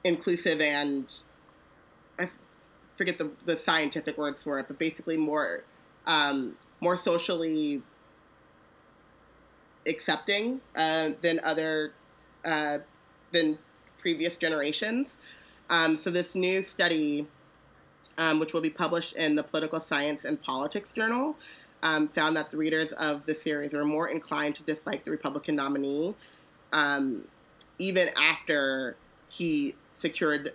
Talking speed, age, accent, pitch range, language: 125 wpm, 30-49, American, 145-170 Hz, English